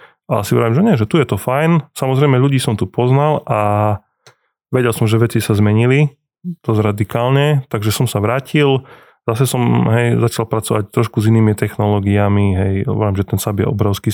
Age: 20-39